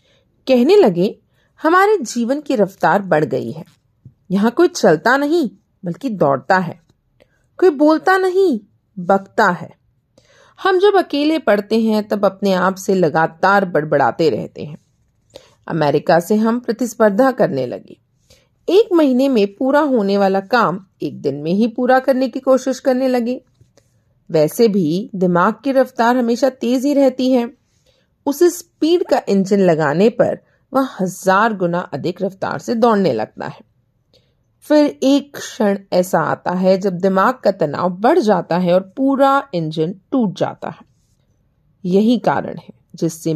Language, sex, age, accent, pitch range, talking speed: Hindi, female, 40-59, native, 165-260 Hz, 145 wpm